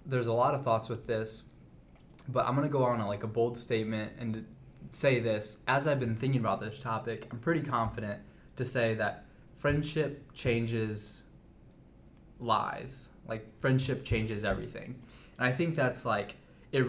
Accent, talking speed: American, 165 wpm